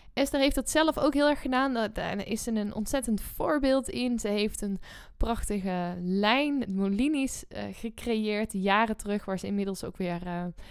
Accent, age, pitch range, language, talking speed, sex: Dutch, 10-29, 205-265 Hz, Dutch, 175 wpm, female